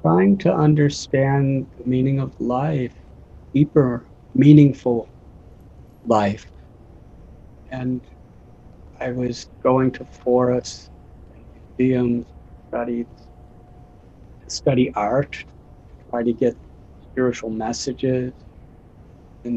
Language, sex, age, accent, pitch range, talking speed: English, male, 50-69, American, 115-125 Hz, 80 wpm